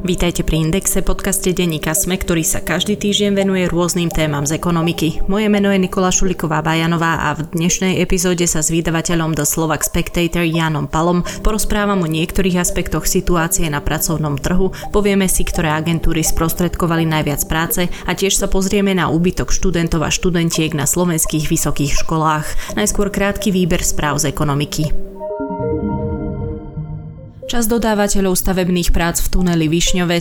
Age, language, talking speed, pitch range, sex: 20-39, Slovak, 145 wpm, 160-185 Hz, female